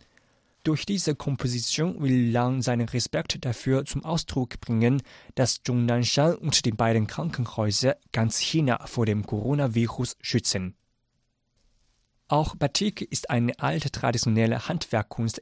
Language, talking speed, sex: German, 115 wpm, male